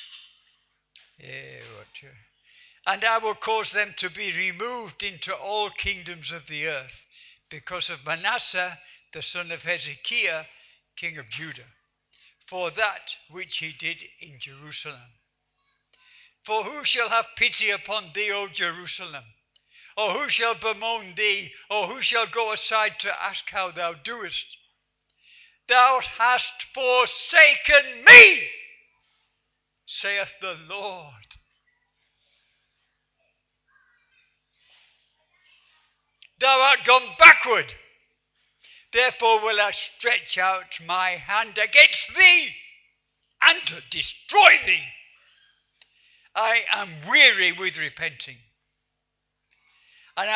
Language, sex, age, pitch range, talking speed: Swahili, male, 60-79, 175-230 Hz, 100 wpm